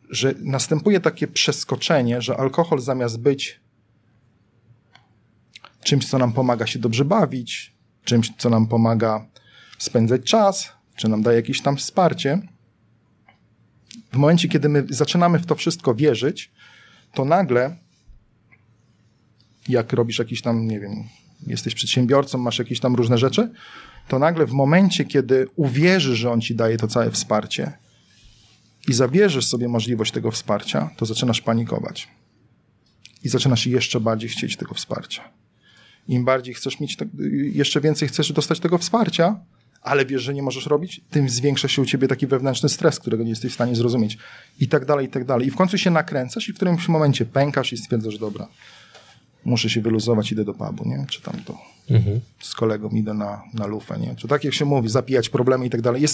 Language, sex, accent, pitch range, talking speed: Polish, male, native, 115-150 Hz, 165 wpm